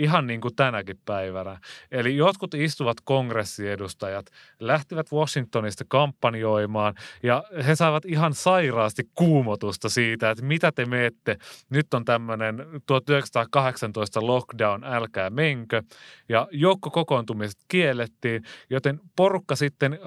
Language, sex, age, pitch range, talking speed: Finnish, male, 30-49, 105-140 Hz, 110 wpm